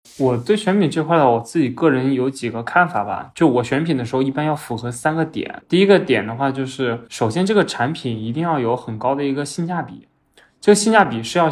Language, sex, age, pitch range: Chinese, male, 20-39, 120-170 Hz